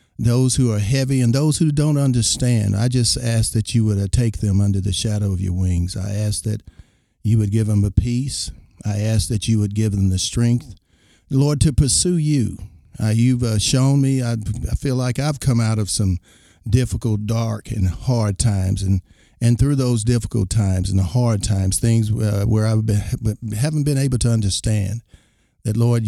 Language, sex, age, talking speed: English, male, 50-69, 200 wpm